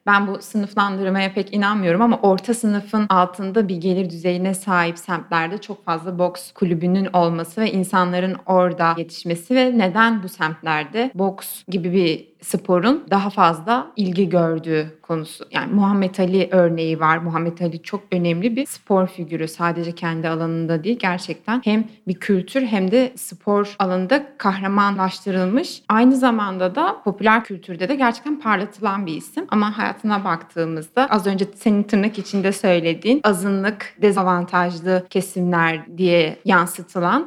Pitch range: 175-215 Hz